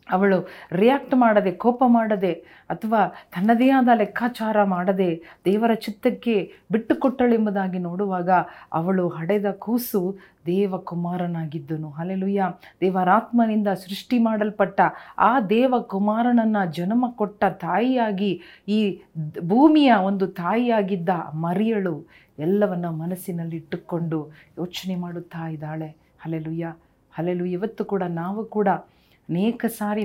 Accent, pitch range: native, 180-220 Hz